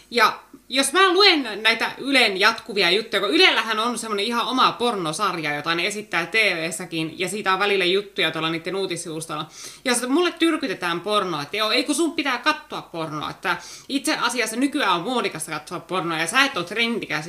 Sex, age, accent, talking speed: female, 20-39, native, 185 wpm